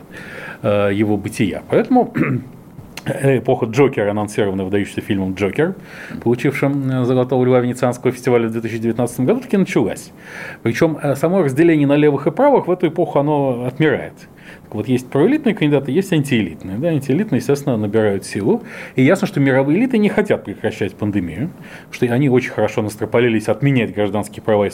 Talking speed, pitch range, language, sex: 145 wpm, 105-135 Hz, Russian, male